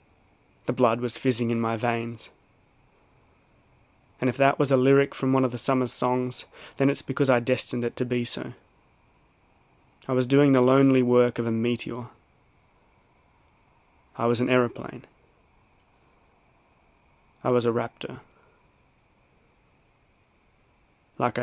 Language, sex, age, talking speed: English, male, 20-39, 130 wpm